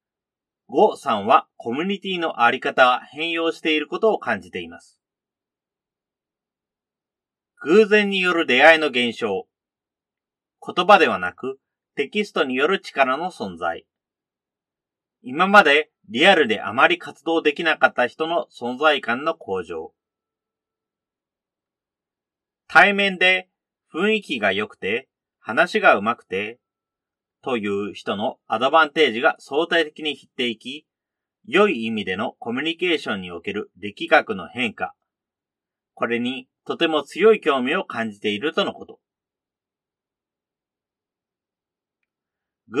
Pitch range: 125-190 Hz